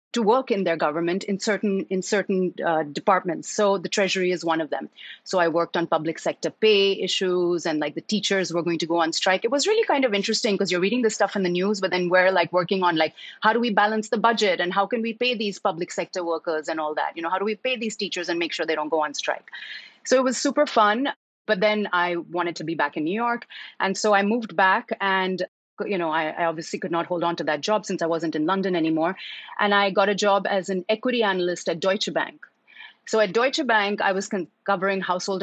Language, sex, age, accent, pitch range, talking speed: English, female, 30-49, Indian, 170-215 Hz, 255 wpm